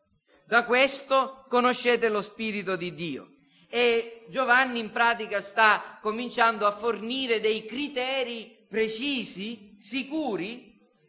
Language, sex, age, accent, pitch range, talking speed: Italian, male, 40-59, native, 210-270 Hz, 105 wpm